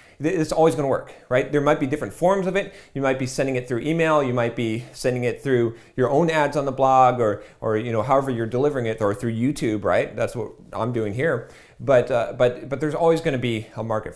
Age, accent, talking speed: 40-59, American, 255 wpm